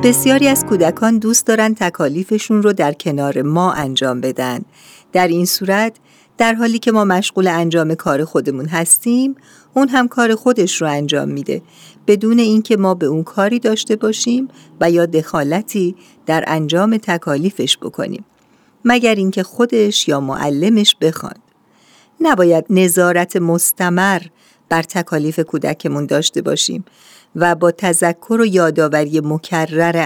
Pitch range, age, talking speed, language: 155-210 Hz, 50-69, 130 wpm, Persian